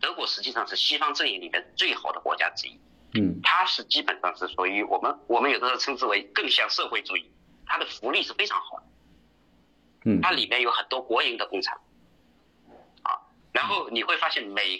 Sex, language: male, Chinese